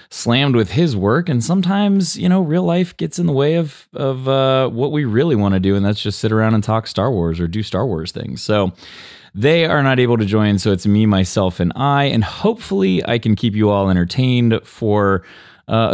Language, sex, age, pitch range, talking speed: English, male, 20-39, 95-130 Hz, 225 wpm